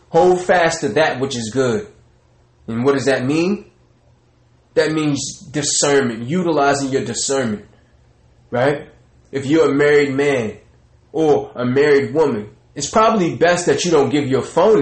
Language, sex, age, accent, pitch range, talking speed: English, male, 20-39, American, 120-155 Hz, 150 wpm